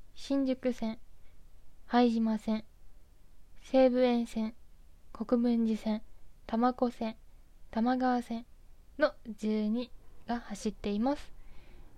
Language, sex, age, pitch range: Japanese, female, 20-39, 215-245 Hz